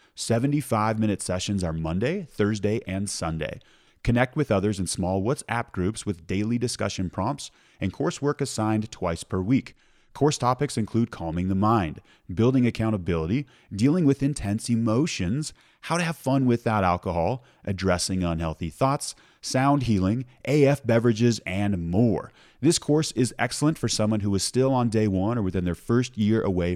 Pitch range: 95-125 Hz